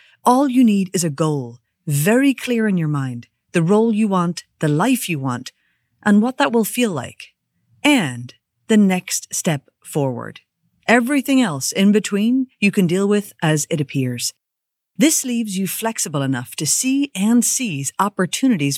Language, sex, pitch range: English, female, 145-220 Hz